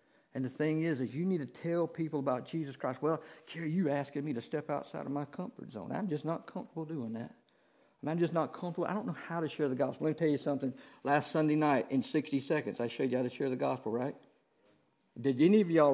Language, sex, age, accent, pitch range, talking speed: English, male, 60-79, American, 135-165 Hz, 250 wpm